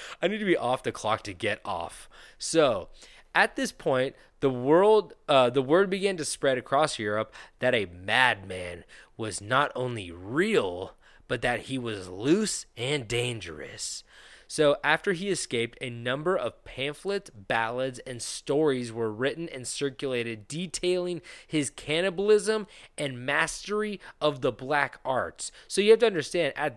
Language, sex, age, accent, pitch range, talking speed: English, male, 20-39, American, 120-155 Hz, 150 wpm